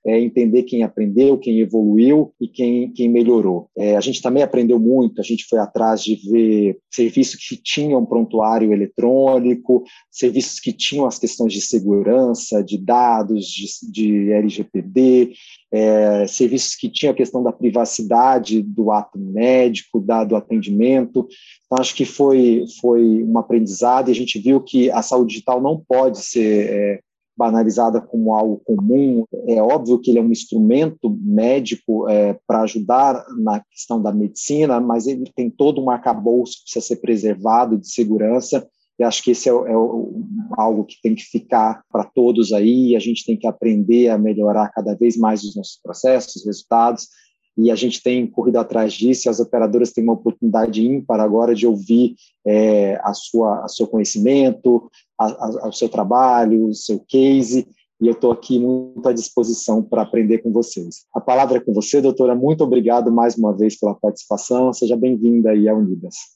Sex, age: male, 40-59